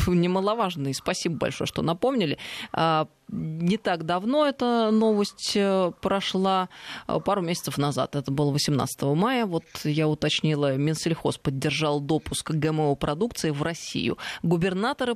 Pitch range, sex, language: 150-190 Hz, female, Russian